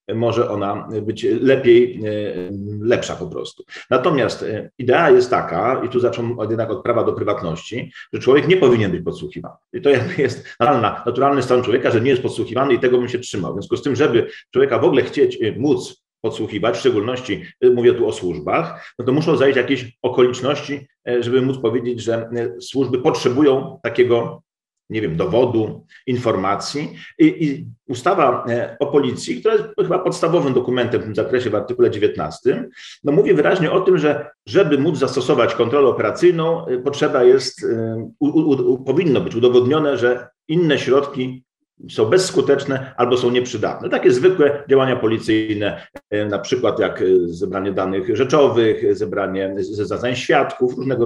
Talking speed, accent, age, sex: 155 wpm, native, 40-59, male